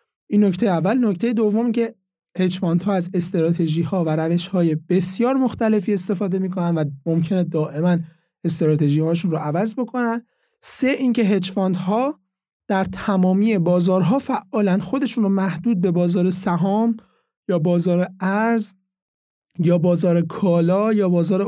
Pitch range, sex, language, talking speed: 170-215 Hz, male, Persian, 135 wpm